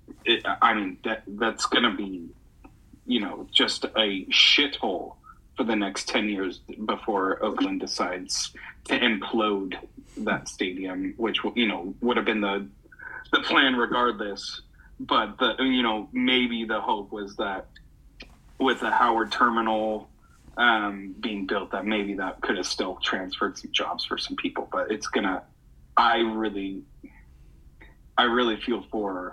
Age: 30-49